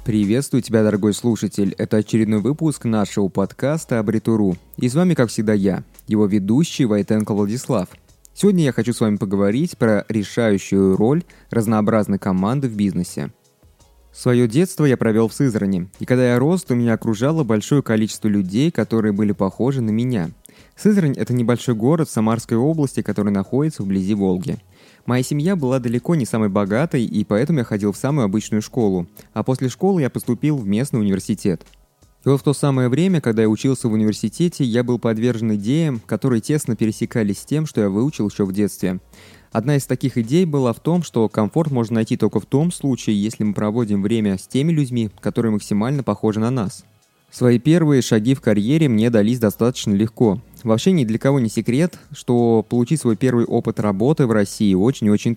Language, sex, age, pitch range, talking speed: Russian, male, 20-39, 105-130 Hz, 180 wpm